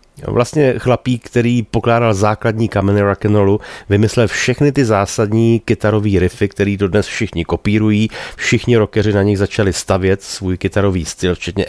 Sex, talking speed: male, 140 wpm